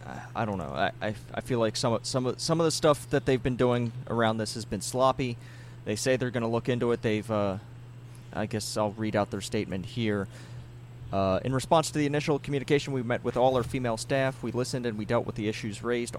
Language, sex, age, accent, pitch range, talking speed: English, male, 30-49, American, 110-120 Hz, 235 wpm